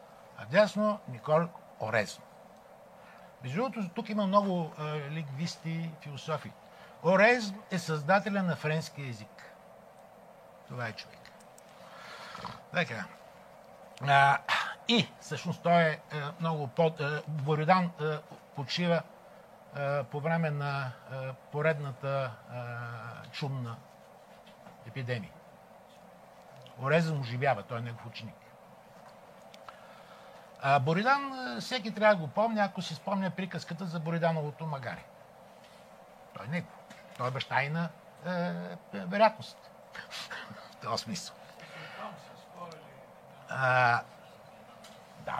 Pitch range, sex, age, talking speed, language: 135-185 Hz, male, 60-79, 100 wpm, Bulgarian